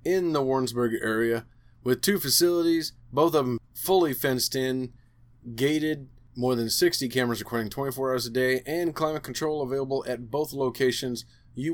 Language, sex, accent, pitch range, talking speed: English, male, American, 120-150 Hz, 160 wpm